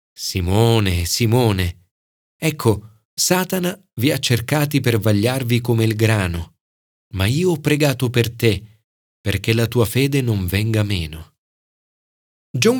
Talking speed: 120 wpm